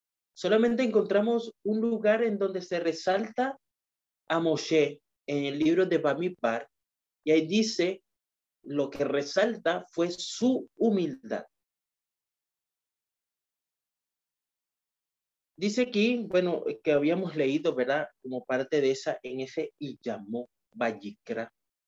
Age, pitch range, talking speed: 30-49, 130-180 Hz, 110 wpm